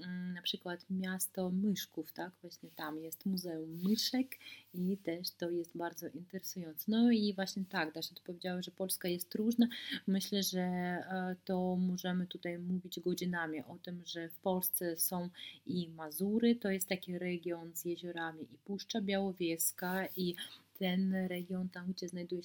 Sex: female